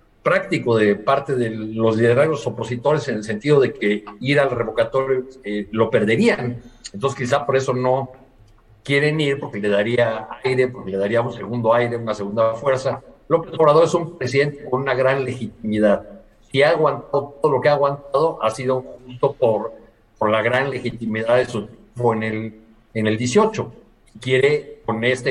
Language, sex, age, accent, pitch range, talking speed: Spanish, male, 50-69, Mexican, 110-135 Hz, 175 wpm